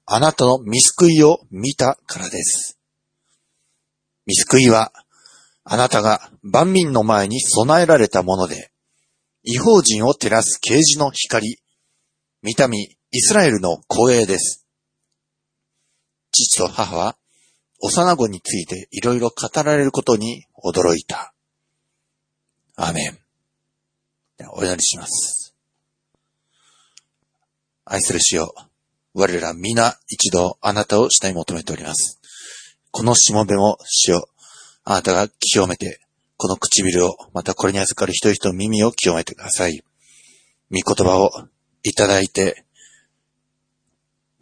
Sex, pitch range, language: male, 95-120 Hz, Japanese